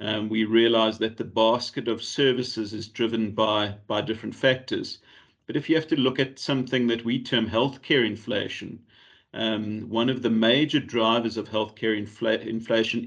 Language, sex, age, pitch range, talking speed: English, male, 40-59, 110-130 Hz, 175 wpm